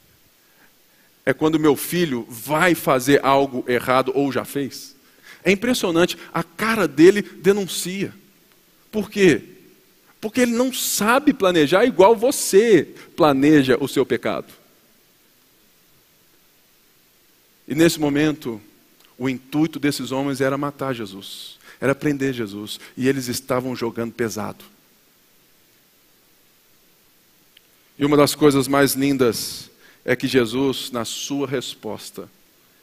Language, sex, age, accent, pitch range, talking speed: Portuguese, male, 40-59, Brazilian, 125-155 Hz, 110 wpm